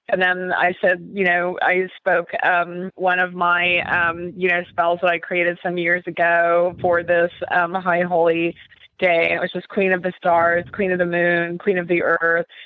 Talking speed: 210 wpm